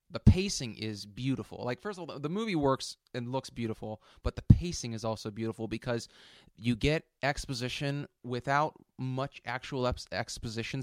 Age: 20-39